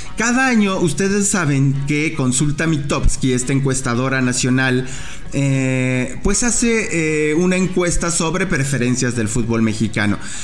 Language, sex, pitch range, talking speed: English, male, 125-180 Hz, 120 wpm